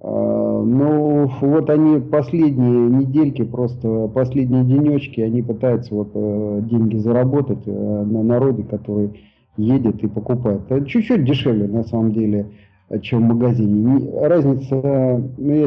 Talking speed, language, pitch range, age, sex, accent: 120 wpm, Russian, 110-135 Hz, 40-59, male, native